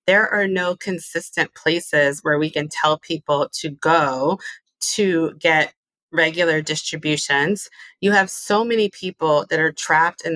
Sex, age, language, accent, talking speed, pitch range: female, 30-49, English, American, 145 wpm, 150-175 Hz